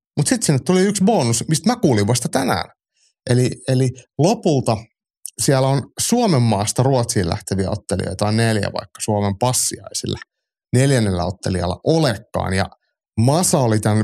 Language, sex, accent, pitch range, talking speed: Finnish, male, native, 105-140 Hz, 140 wpm